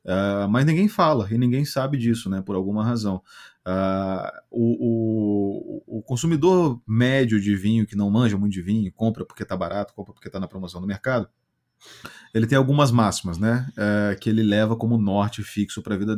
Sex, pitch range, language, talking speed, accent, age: male, 100-125 Hz, Portuguese, 190 wpm, Brazilian, 30-49